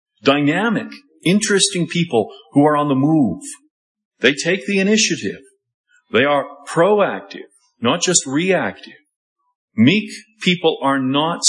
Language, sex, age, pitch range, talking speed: English, male, 40-59, 130-210 Hz, 115 wpm